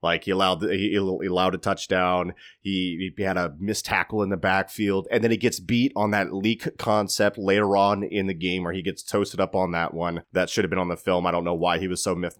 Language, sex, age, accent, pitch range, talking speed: English, male, 30-49, American, 95-115 Hz, 255 wpm